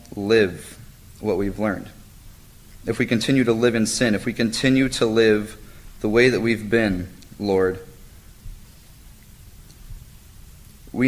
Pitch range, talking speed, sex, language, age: 100-115 Hz, 125 wpm, male, English, 30-49